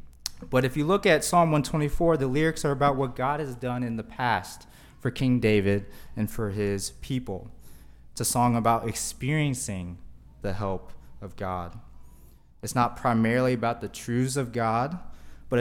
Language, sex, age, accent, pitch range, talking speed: English, male, 20-39, American, 100-130 Hz, 165 wpm